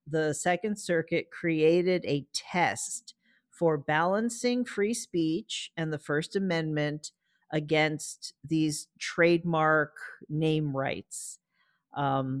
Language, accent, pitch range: English, American, 145-175 Hz